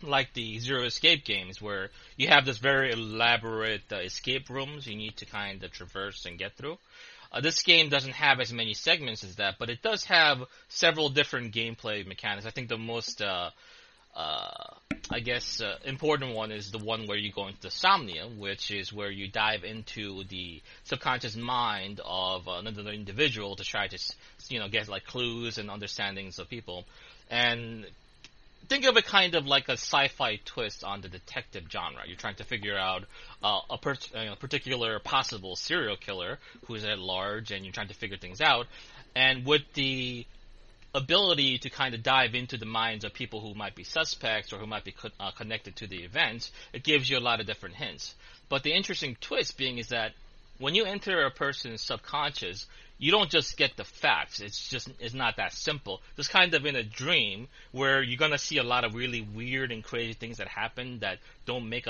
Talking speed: 200 wpm